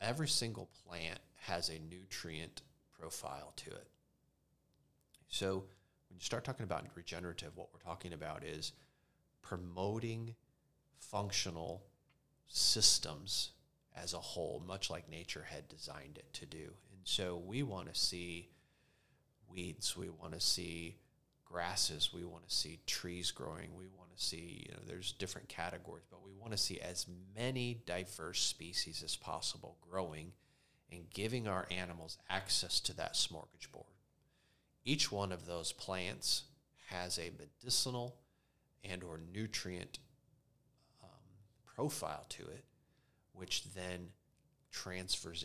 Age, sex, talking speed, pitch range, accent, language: 30-49, male, 130 wpm, 85-115 Hz, American, English